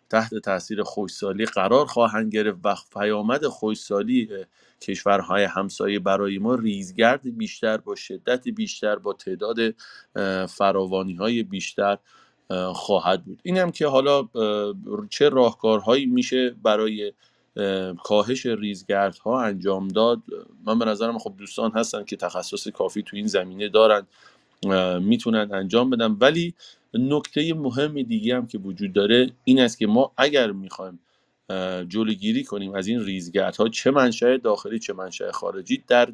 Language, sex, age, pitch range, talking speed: Persian, male, 30-49, 100-125 Hz, 130 wpm